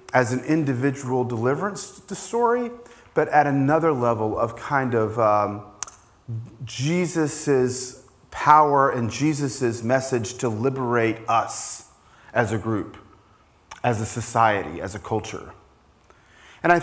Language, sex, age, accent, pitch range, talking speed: English, male, 40-59, American, 120-170 Hz, 120 wpm